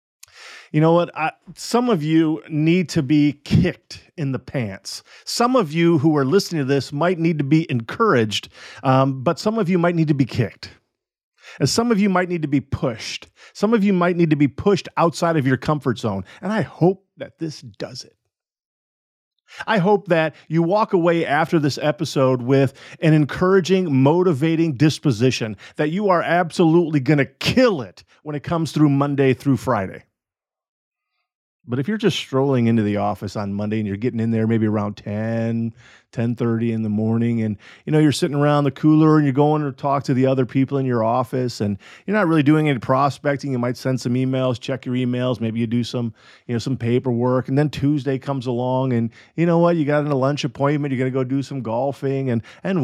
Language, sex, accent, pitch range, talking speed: English, male, American, 125-165 Hz, 210 wpm